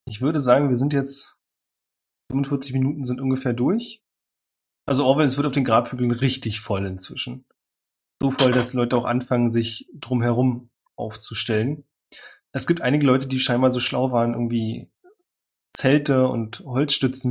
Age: 20-39